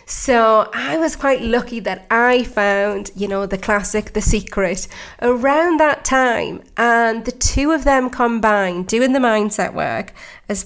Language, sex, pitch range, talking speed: English, female, 195-235 Hz, 160 wpm